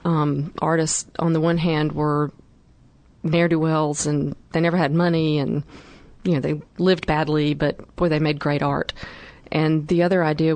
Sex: female